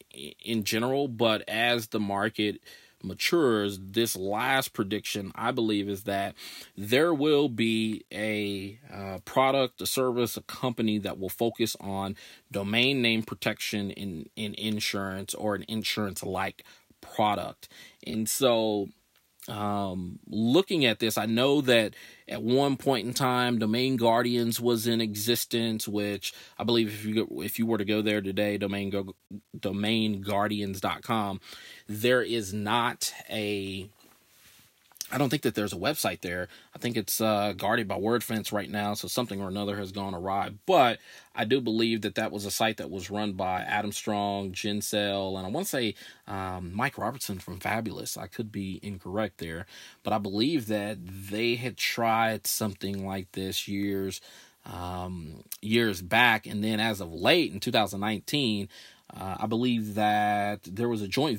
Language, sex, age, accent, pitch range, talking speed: English, male, 30-49, American, 100-115 Hz, 155 wpm